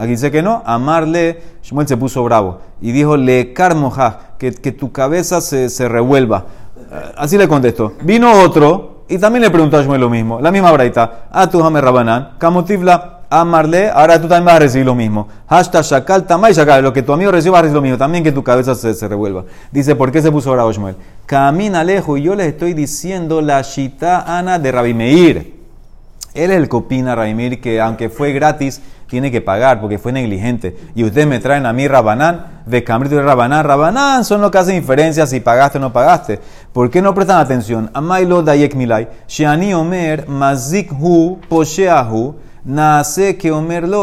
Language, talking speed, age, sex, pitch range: Spanish, 170 wpm, 30-49, male, 125-170 Hz